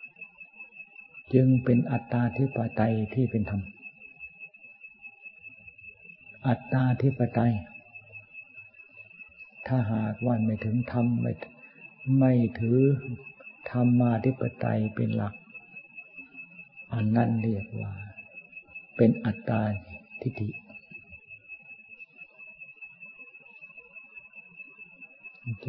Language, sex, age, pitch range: Thai, male, 60-79, 110-125 Hz